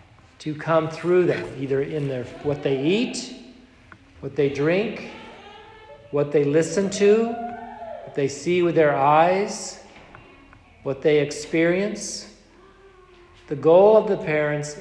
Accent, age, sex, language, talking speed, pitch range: American, 50-69, male, English, 125 wpm, 145-195 Hz